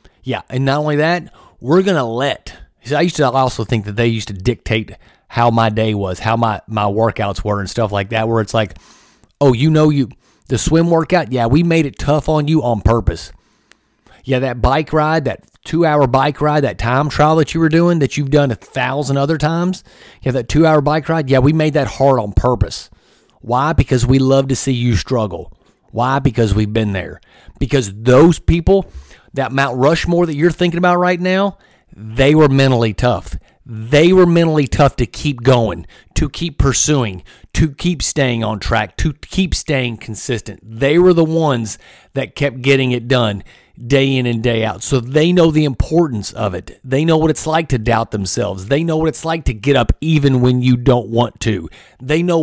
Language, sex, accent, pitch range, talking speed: English, male, American, 115-155 Hz, 205 wpm